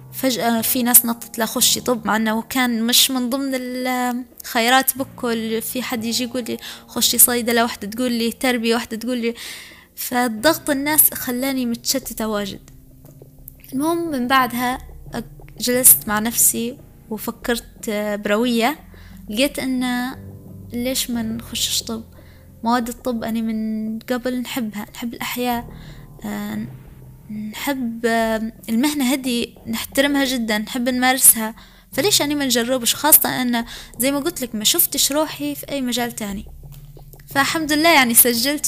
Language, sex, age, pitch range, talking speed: Arabic, female, 20-39, 225-265 Hz, 125 wpm